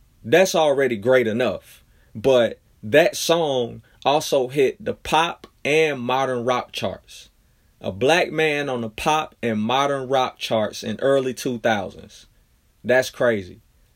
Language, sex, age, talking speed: English, male, 30-49, 130 wpm